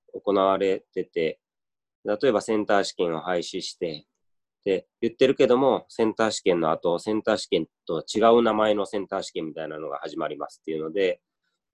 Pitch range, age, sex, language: 90-120 Hz, 20-39, male, Japanese